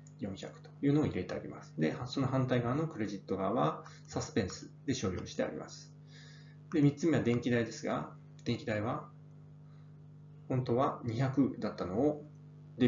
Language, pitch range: Japanese, 110-150 Hz